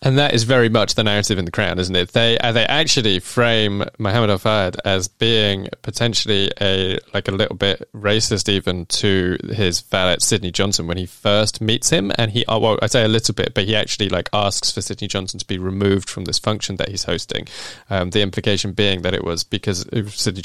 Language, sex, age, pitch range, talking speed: English, male, 20-39, 95-115 Hz, 215 wpm